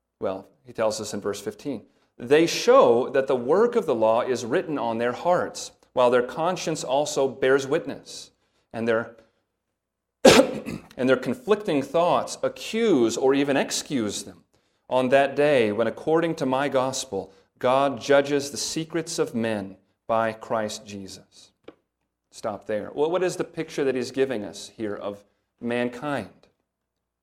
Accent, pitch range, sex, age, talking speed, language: American, 110-165 Hz, male, 40-59, 150 wpm, English